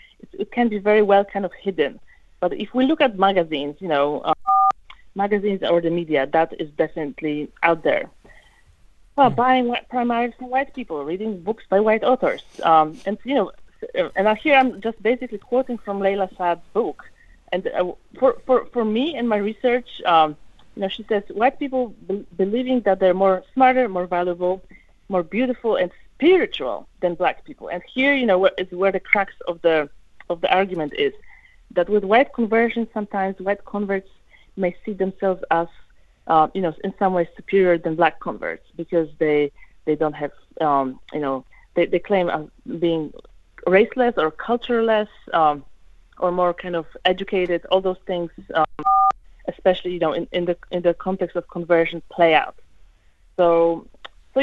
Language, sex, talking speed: English, female, 175 wpm